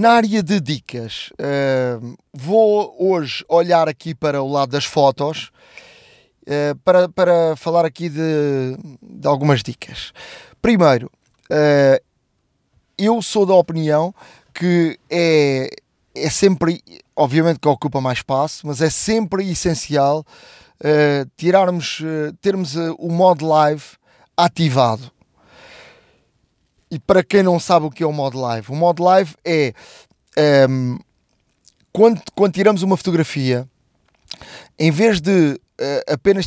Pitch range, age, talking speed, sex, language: 145-190 Hz, 20-39, 110 wpm, male, Portuguese